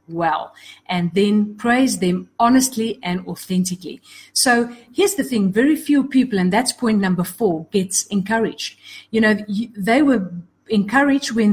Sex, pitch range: female, 180-230 Hz